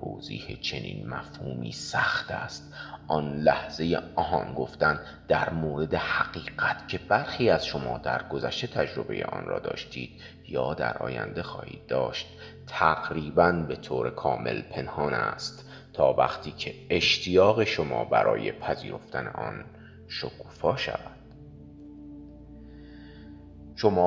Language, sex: Persian, male